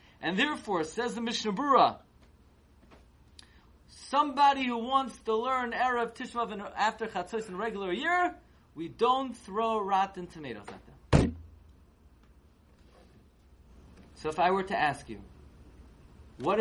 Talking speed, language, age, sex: 120 wpm, English, 30-49, male